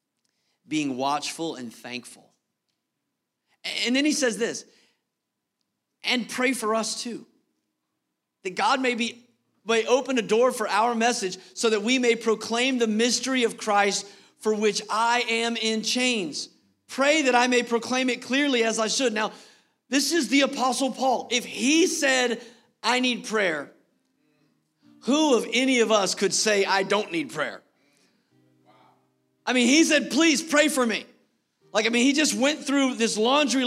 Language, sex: English, male